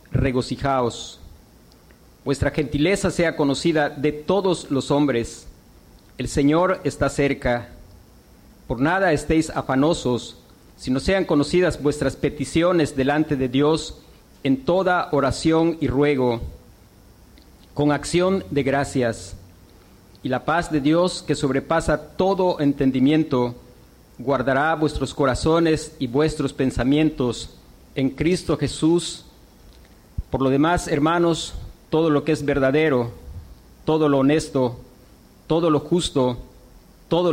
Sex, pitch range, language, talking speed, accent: male, 125-155 Hz, Spanish, 110 wpm, Mexican